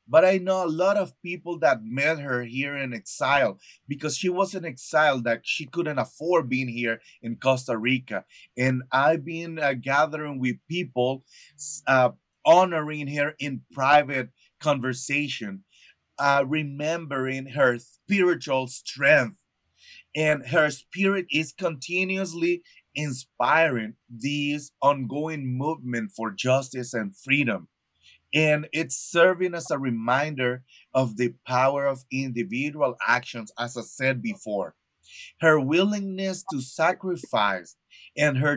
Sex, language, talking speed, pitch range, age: male, English, 125 wpm, 125-155 Hz, 30-49